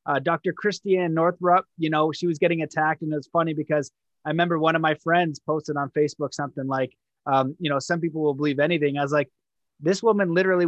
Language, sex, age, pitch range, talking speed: English, male, 20-39, 145-170 Hz, 220 wpm